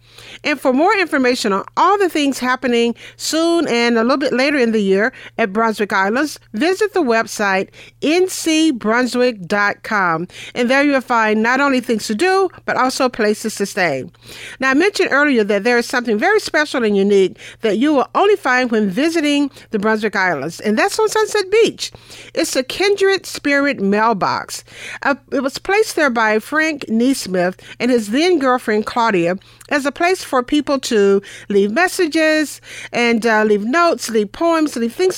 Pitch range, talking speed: 210-300 Hz, 170 wpm